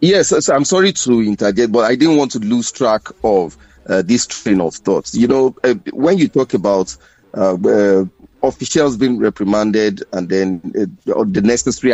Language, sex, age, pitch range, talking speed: English, male, 40-59, 115-175 Hz, 175 wpm